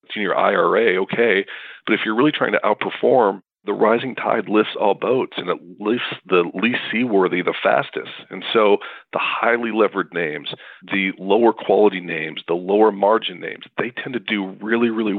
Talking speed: 180 wpm